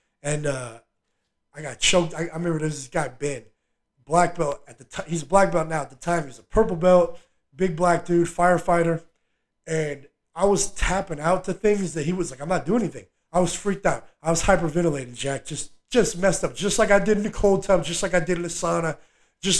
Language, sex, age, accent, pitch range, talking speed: English, male, 30-49, American, 155-185 Hz, 235 wpm